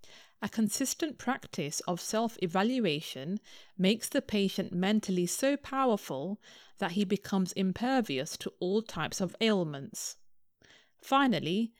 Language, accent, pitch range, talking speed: English, British, 180-230 Hz, 105 wpm